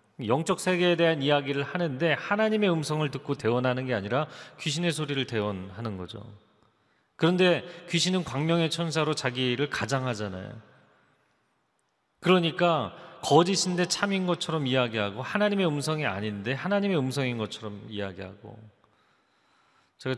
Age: 30-49